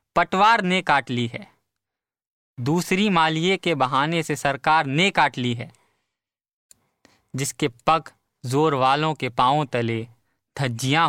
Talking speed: 125 wpm